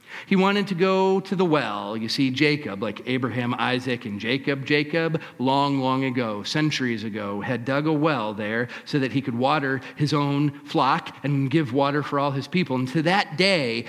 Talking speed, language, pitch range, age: 195 wpm, English, 110-140 Hz, 40-59